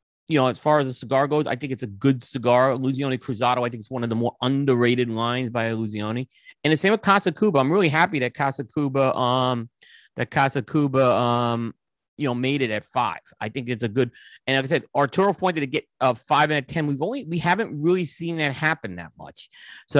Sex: male